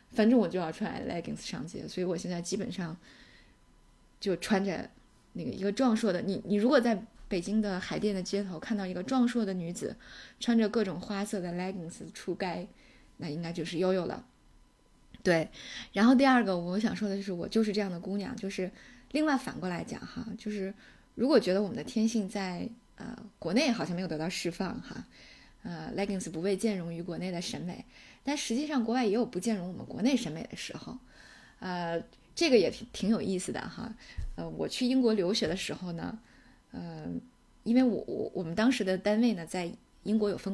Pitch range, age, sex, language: 185-230 Hz, 20-39, female, Chinese